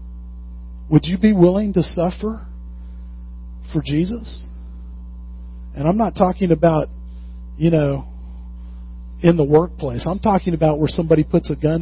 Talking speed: 130 wpm